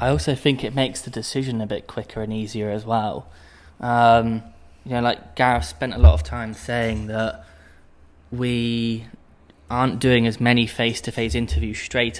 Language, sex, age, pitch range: Thai, male, 20-39, 105-120 Hz